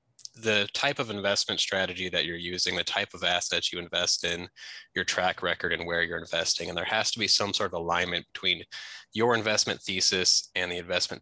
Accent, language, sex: American, English, male